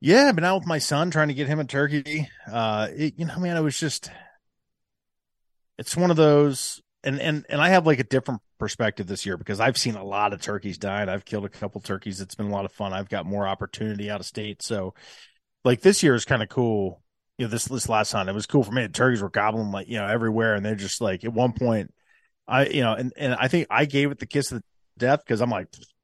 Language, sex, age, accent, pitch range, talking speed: English, male, 30-49, American, 100-130 Hz, 275 wpm